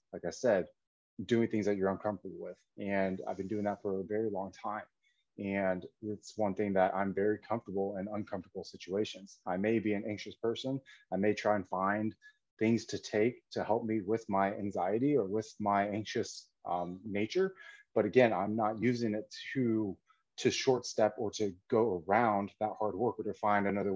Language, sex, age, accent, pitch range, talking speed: English, male, 30-49, American, 100-115 Hz, 190 wpm